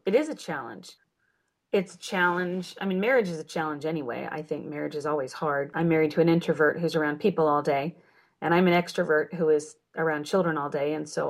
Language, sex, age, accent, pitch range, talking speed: English, female, 30-49, American, 155-180 Hz, 225 wpm